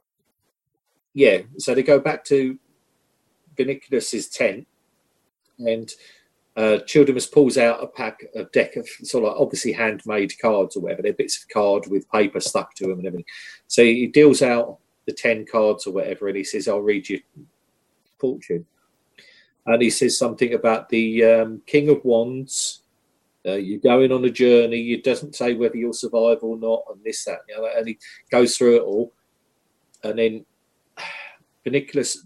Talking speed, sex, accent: 165 wpm, male, British